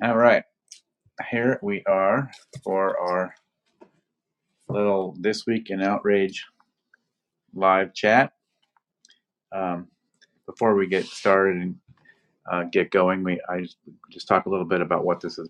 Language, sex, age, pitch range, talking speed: English, male, 40-59, 90-105 Hz, 130 wpm